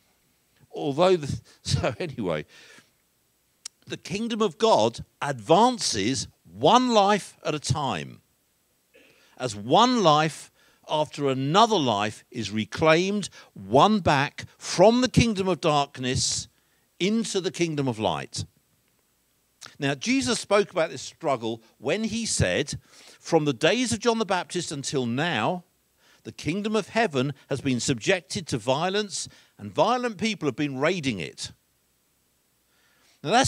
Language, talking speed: English, 125 wpm